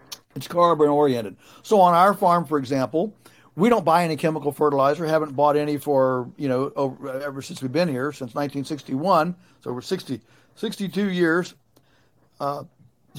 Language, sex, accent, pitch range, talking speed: English, male, American, 140-180 Hz, 155 wpm